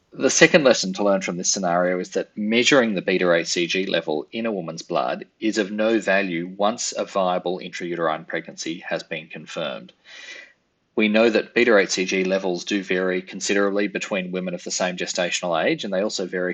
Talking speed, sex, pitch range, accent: 185 wpm, male, 90-100 Hz, Australian